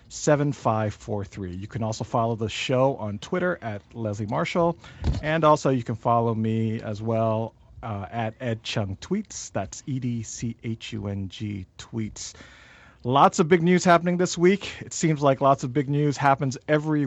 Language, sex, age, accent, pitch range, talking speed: English, male, 40-59, American, 115-145 Hz, 185 wpm